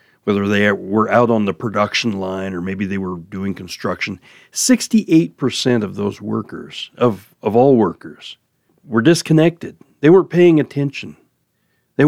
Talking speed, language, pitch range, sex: 145 wpm, English, 100-140 Hz, male